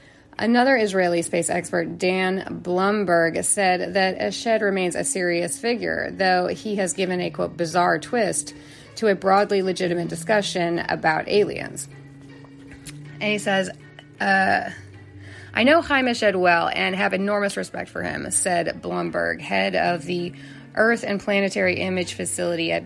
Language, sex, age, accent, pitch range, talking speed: English, female, 30-49, American, 140-220 Hz, 140 wpm